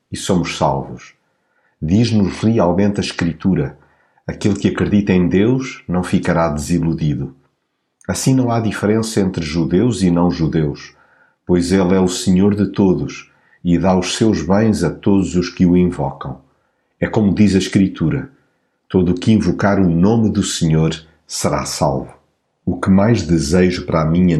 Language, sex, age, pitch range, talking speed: Portuguese, male, 50-69, 85-100 Hz, 150 wpm